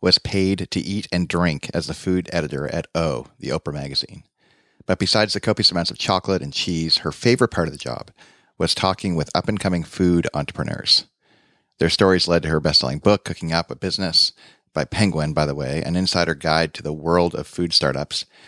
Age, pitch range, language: 40-59, 80-95 Hz, English